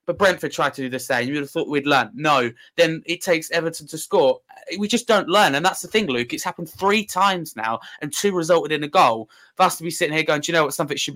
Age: 20-39